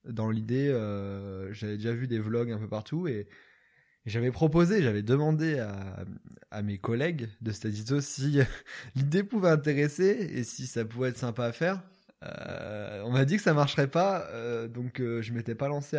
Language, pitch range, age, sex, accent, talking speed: French, 105-145 Hz, 20-39, male, French, 190 wpm